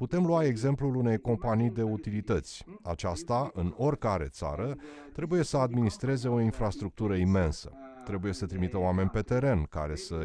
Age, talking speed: 30-49, 145 wpm